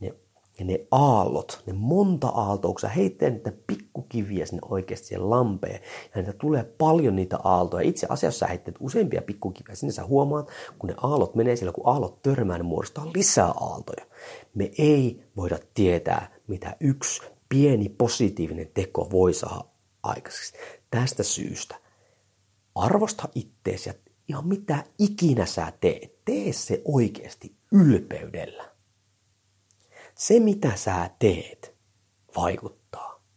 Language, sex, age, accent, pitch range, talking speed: Finnish, male, 40-59, native, 95-135 Hz, 125 wpm